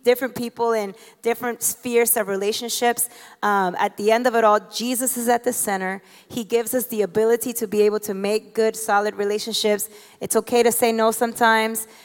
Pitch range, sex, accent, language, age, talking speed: 210-245 Hz, female, American, English, 20-39, 190 wpm